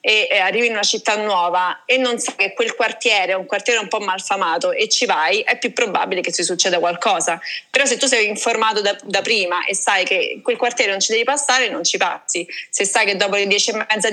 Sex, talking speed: female, 240 wpm